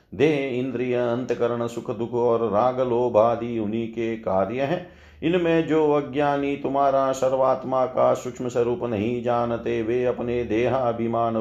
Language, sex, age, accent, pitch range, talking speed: Hindi, male, 40-59, native, 120-135 Hz, 140 wpm